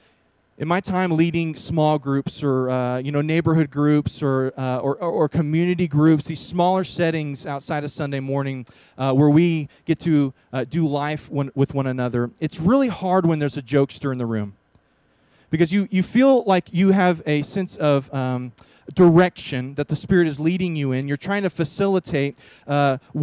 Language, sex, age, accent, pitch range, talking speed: English, male, 20-39, American, 145-185 Hz, 185 wpm